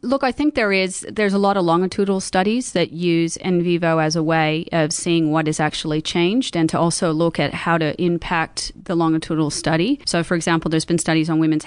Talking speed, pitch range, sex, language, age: 220 wpm, 155-170 Hz, female, English, 30-49